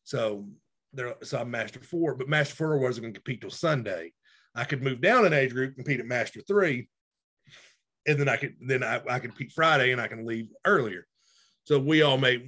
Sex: male